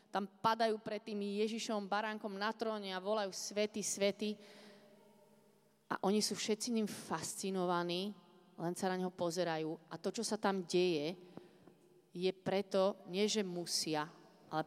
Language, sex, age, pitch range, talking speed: Czech, female, 30-49, 180-210 Hz, 140 wpm